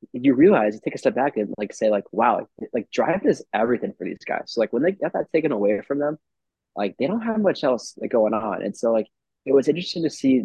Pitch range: 105-130 Hz